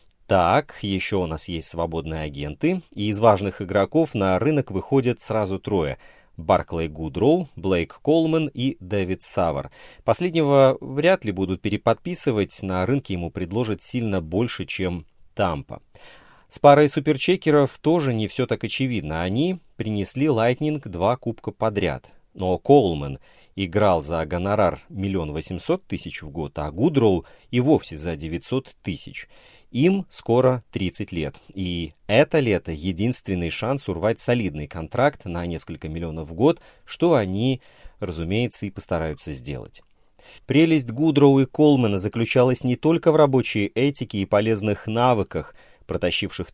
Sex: male